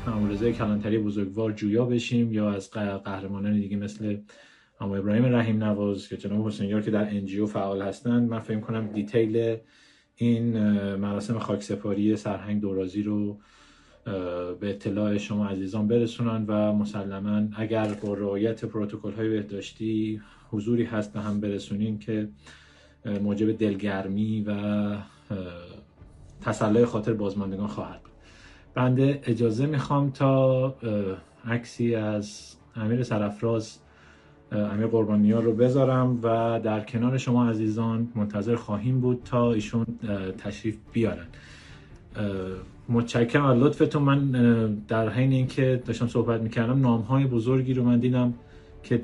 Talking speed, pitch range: 120 wpm, 105-115 Hz